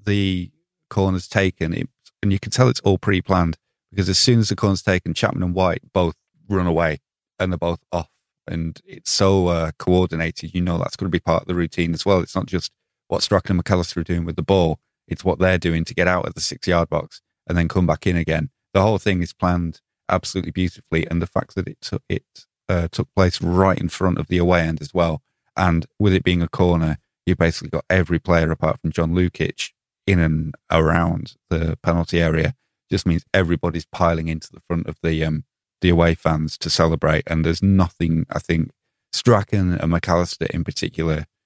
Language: English